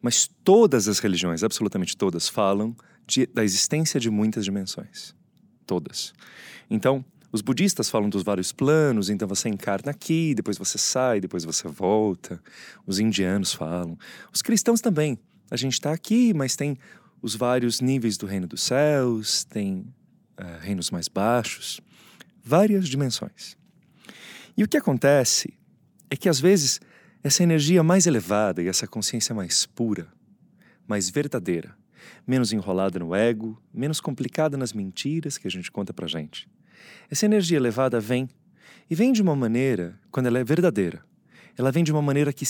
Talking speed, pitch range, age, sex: 150 wpm, 105-175 Hz, 30-49, male